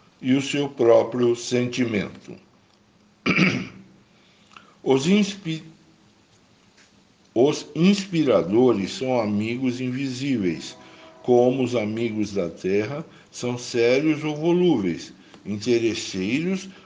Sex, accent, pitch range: male, Brazilian, 105-155 Hz